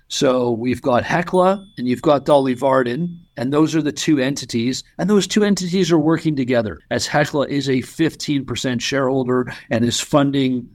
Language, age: English, 50-69